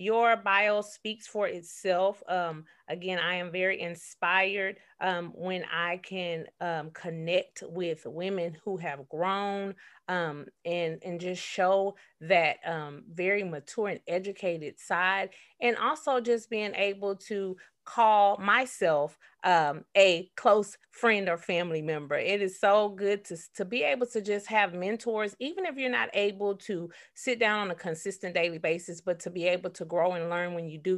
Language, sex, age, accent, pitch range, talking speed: English, female, 30-49, American, 175-210 Hz, 165 wpm